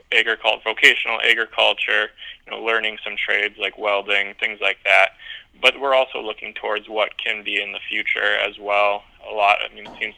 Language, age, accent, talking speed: English, 20-39, American, 185 wpm